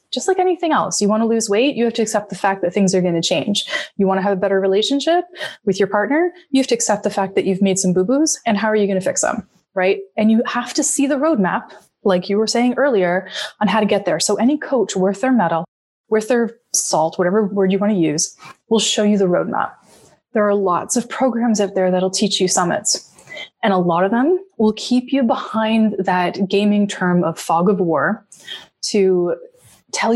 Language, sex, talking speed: English, female, 235 wpm